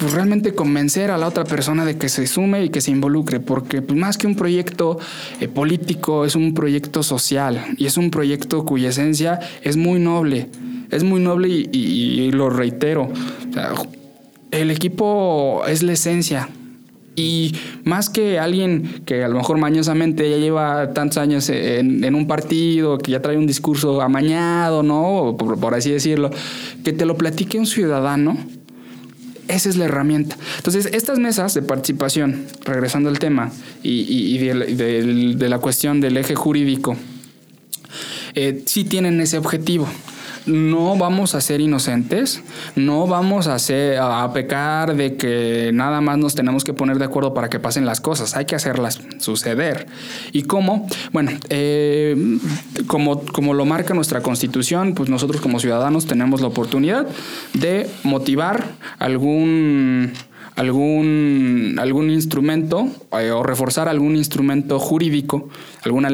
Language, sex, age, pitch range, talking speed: Spanish, male, 20-39, 135-165 Hz, 155 wpm